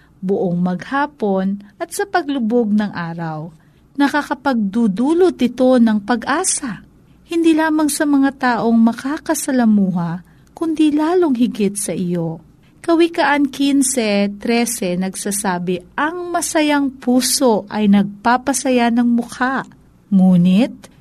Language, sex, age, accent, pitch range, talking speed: Filipino, female, 40-59, native, 180-260 Hz, 95 wpm